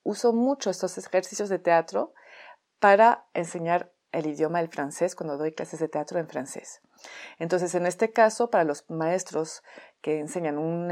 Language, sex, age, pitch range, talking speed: Spanish, female, 30-49, 165-205 Hz, 160 wpm